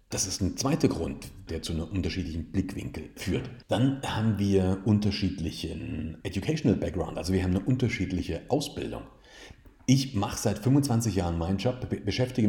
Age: 40-59